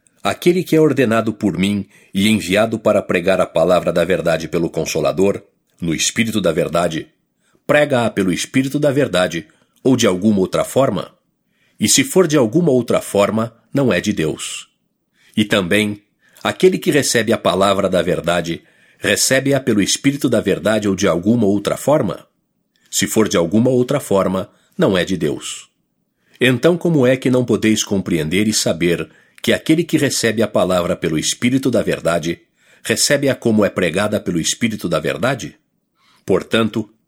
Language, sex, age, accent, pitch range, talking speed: English, male, 50-69, Brazilian, 100-130 Hz, 160 wpm